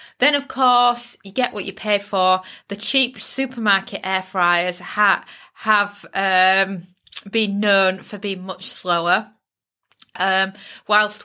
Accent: British